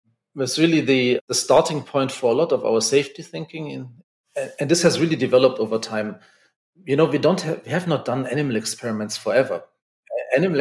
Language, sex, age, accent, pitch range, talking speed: English, male, 40-59, German, 115-155 Hz, 190 wpm